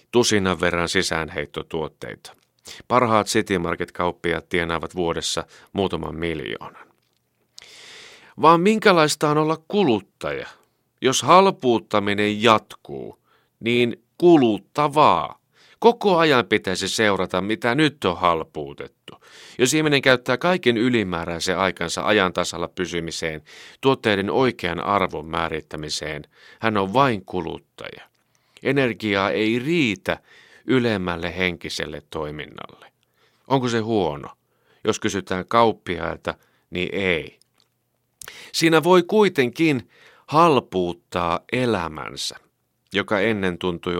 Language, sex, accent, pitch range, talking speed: Finnish, male, native, 85-125 Hz, 90 wpm